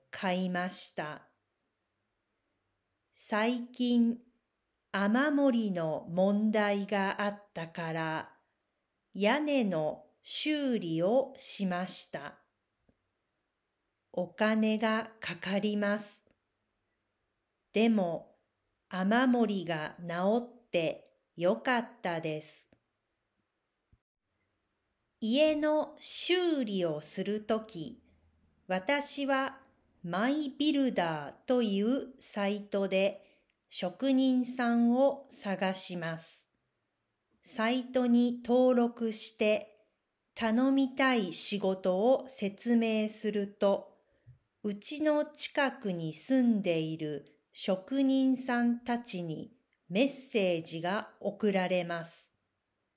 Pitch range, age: 180-250 Hz, 50-69